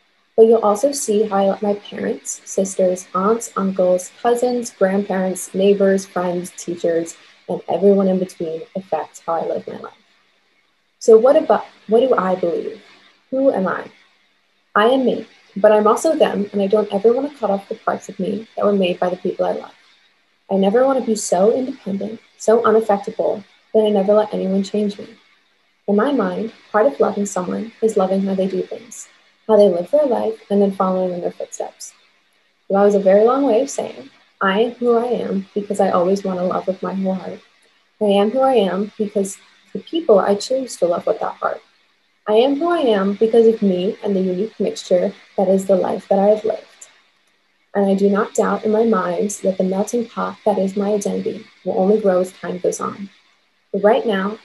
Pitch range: 190-220 Hz